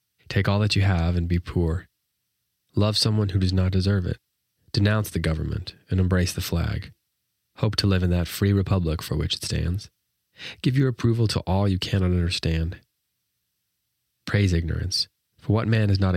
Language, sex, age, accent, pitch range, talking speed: English, male, 30-49, American, 85-100 Hz, 180 wpm